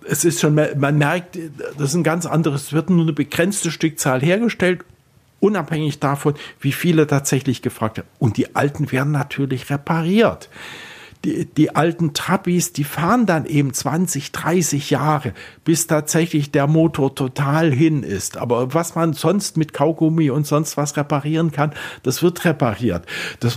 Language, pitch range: German, 140-165 Hz